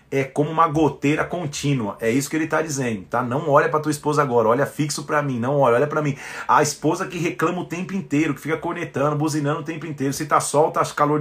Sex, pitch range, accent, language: male, 150-185 Hz, Brazilian, Portuguese